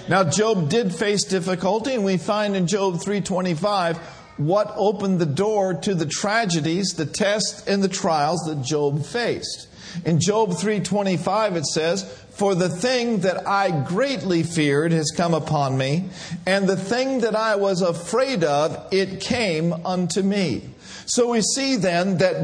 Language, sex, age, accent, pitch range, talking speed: English, male, 50-69, American, 170-215 Hz, 160 wpm